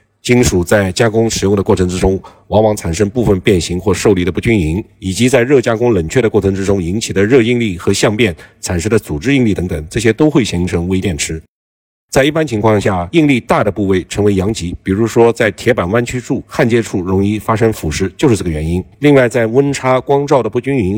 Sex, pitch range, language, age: male, 95-125 Hz, Chinese, 50-69